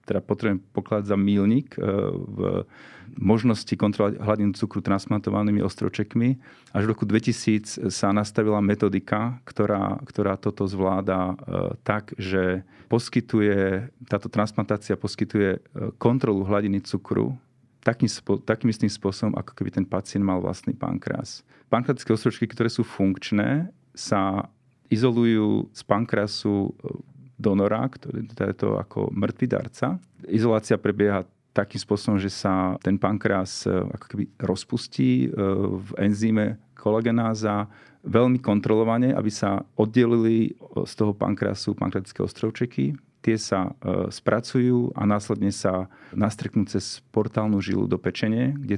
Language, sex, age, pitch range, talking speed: Slovak, male, 40-59, 100-115 Hz, 115 wpm